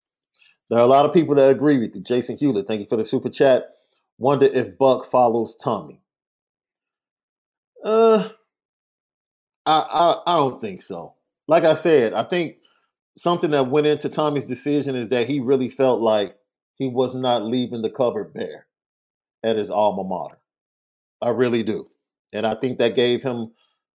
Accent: American